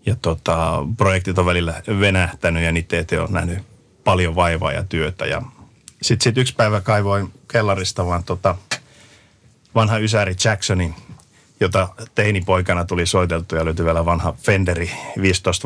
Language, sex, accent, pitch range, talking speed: Finnish, male, native, 90-110 Hz, 140 wpm